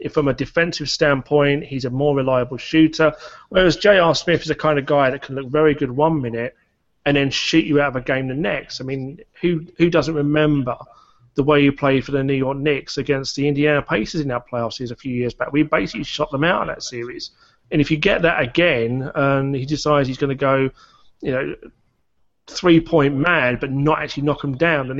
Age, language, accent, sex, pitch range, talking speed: 30-49, English, British, male, 125-150 Hz, 225 wpm